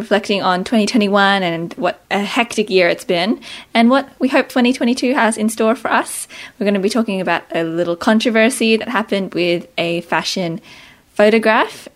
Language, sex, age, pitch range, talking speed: English, female, 20-39, 190-240 Hz, 175 wpm